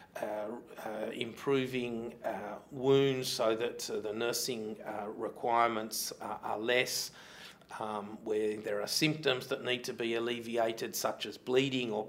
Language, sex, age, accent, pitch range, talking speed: English, male, 40-59, Australian, 110-135 Hz, 145 wpm